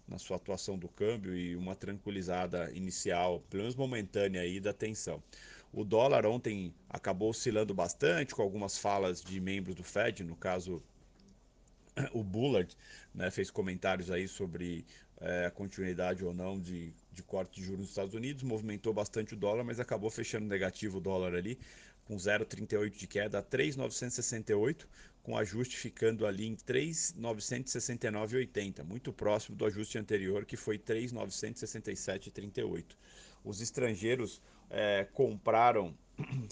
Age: 40-59